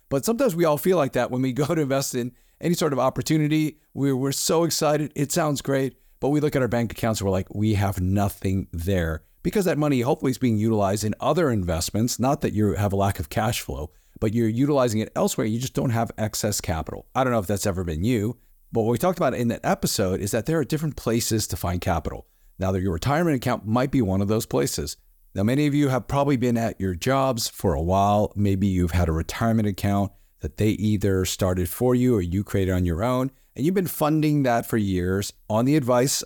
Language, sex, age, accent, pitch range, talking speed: English, male, 40-59, American, 95-130 Hz, 240 wpm